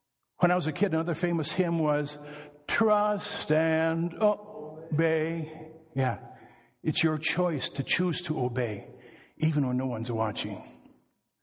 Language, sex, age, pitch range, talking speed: English, male, 60-79, 130-165 Hz, 130 wpm